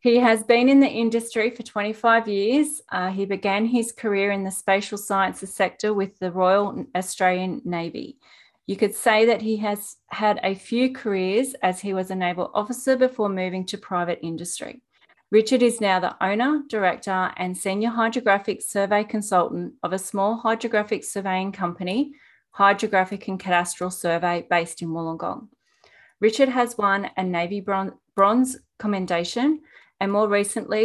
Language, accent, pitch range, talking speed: English, Australian, 185-230 Hz, 155 wpm